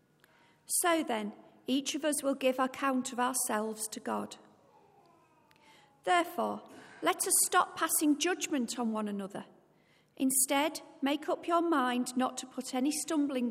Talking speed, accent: 140 wpm, British